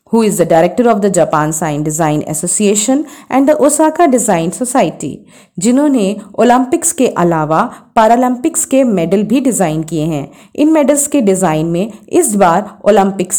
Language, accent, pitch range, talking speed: Hindi, native, 180-250 Hz, 150 wpm